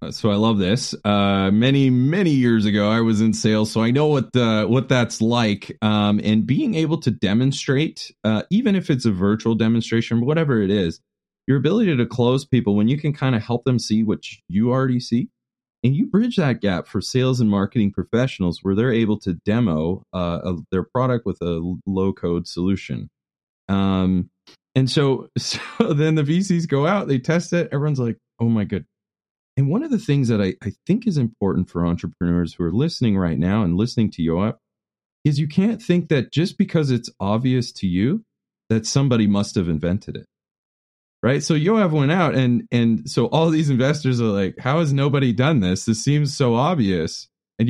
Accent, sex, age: American, male, 30-49